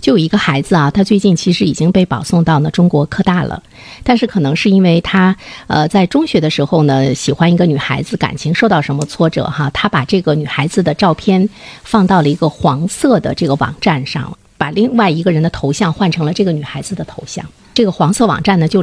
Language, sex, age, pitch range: Chinese, female, 50-69, 150-195 Hz